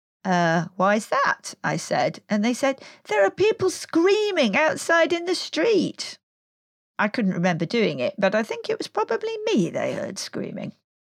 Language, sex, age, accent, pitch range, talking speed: English, female, 40-59, British, 195-290 Hz, 165 wpm